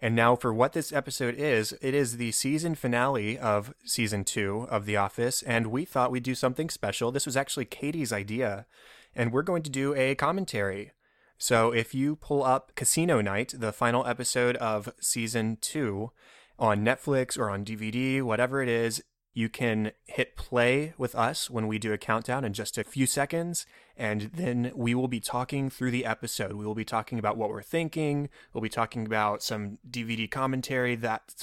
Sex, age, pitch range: male, 20-39, 110-130 Hz